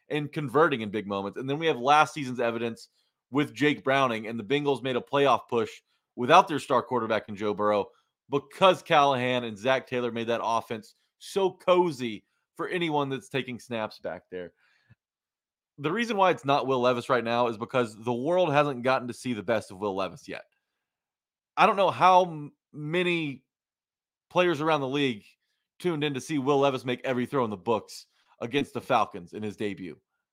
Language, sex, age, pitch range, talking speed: English, male, 30-49, 120-150 Hz, 190 wpm